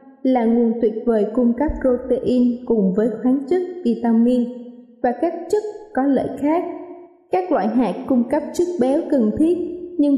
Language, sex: Vietnamese, female